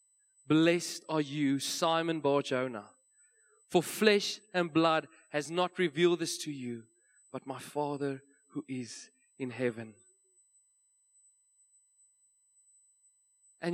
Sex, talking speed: male, 100 wpm